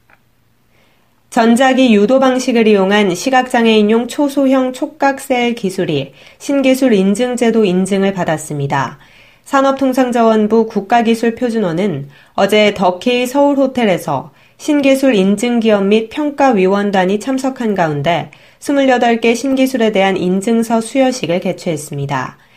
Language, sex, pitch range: Korean, female, 190-250 Hz